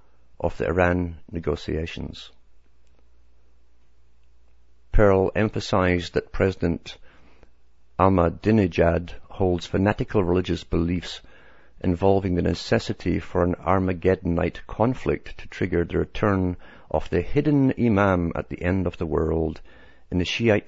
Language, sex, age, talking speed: English, male, 60-79, 105 wpm